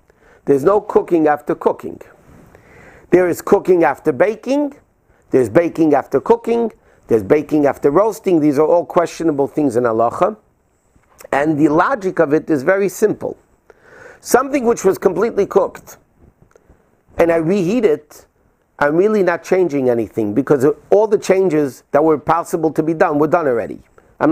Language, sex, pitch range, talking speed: English, male, 150-200 Hz, 150 wpm